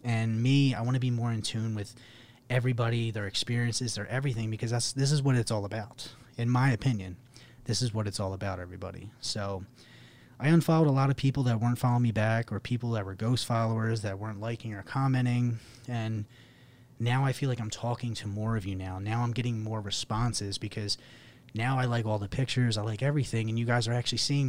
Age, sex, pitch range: 30-49, male, 105-125 Hz